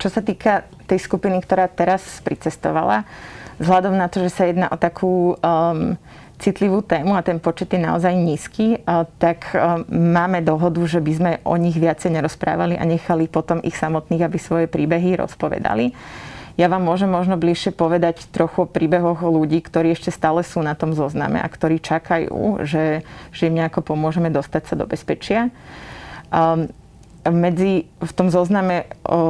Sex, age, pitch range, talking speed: female, 30-49, 160-175 Hz, 160 wpm